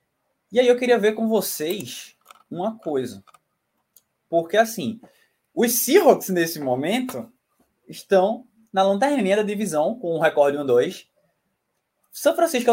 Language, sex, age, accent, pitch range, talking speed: Portuguese, male, 20-39, Brazilian, 140-220 Hz, 125 wpm